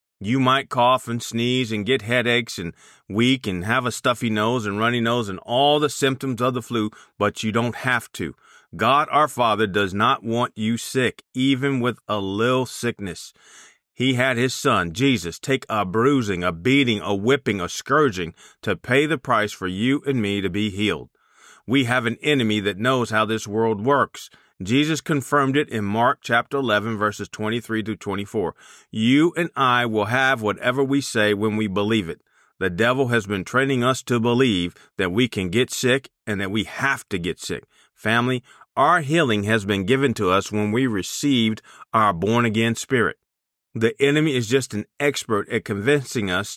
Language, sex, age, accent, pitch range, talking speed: English, male, 40-59, American, 105-130 Hz, 185 wpm